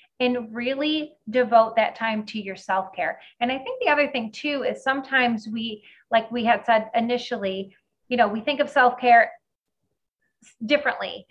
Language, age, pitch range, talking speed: English, 30-49, 205-250 Hz, 160 wpm